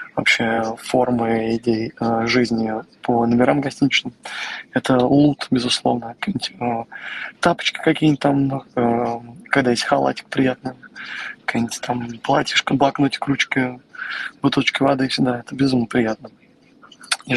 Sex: male